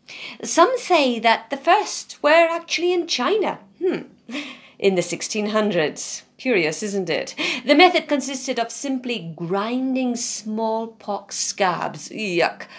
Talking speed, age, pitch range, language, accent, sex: 115 wpm, 50-69, 195-295 Hz, English, British, female